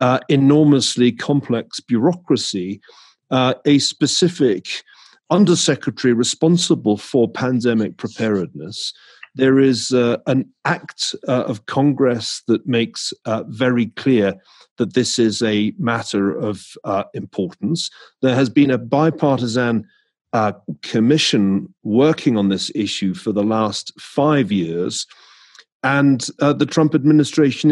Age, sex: 40-59, male